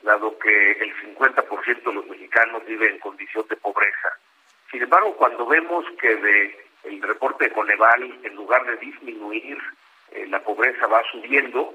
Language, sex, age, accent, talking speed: Spanish, male, 50-69, Mexican, 160 wpm